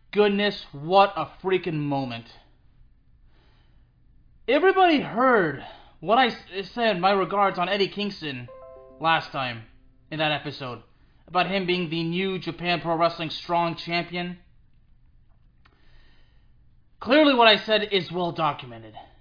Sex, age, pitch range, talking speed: male, 20-39, 165-220 Hz, 120 wpm